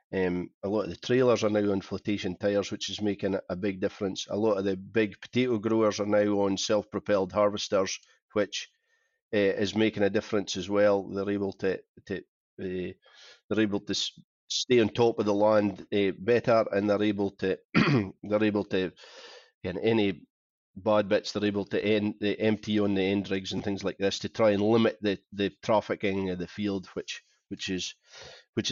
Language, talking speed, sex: English, 190 wpm, male